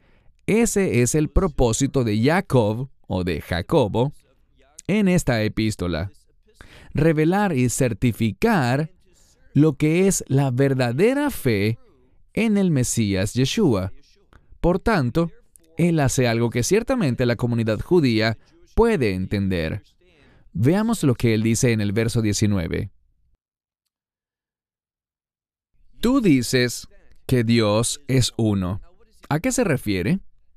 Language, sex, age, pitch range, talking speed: English, male, 30-49, 105-165 Hz, 110 wpm